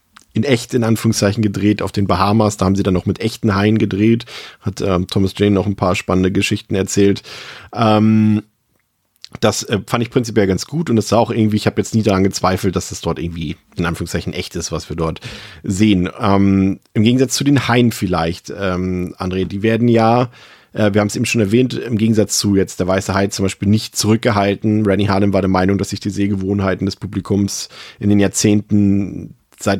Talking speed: 205 wpm